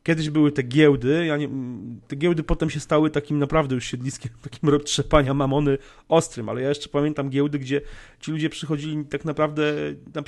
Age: 40-59